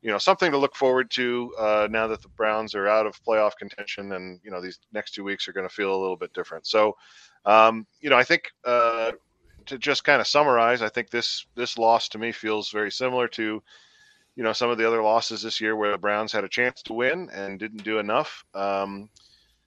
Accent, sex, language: American, male, English